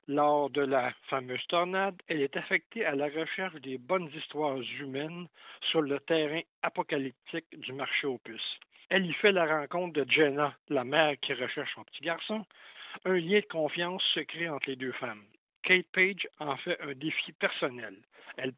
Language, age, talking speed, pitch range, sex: French, 60-79, 175 wpm, 145-185 Hz, male